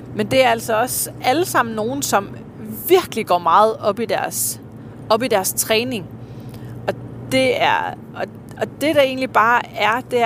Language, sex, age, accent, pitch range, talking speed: Danish, female, 30-49, native, 185-255 Hz, 170 wpm